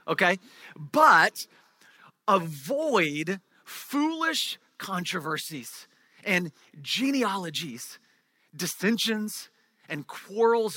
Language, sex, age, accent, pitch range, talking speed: English, male, 40-59, American, 165-240 Hz, 55 wpm